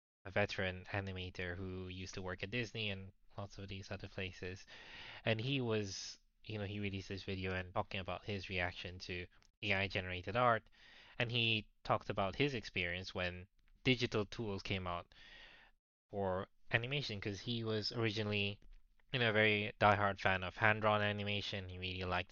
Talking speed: 165 wpm